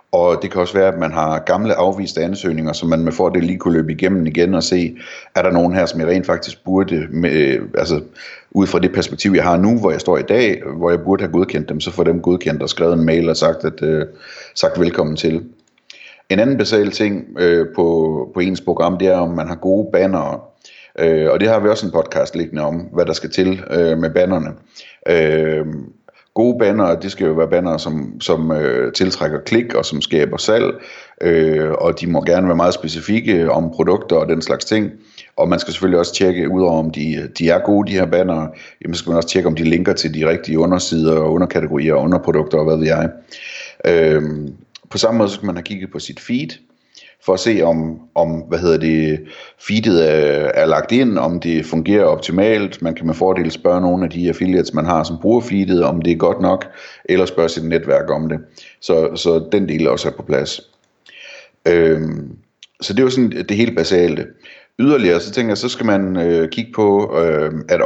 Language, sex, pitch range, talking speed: Danish, male, 80-95 Hz, 220 wpm